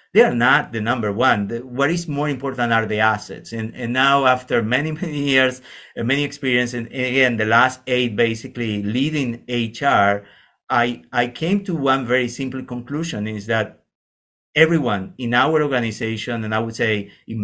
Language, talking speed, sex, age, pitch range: English, 180 wpm, male, 50-69, 110-135 Hz